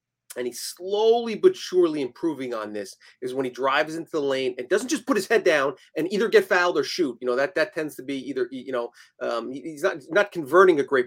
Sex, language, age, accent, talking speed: male, English, 30-49, American, 245 wpm